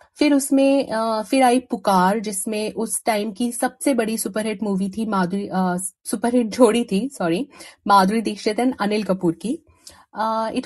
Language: Hindi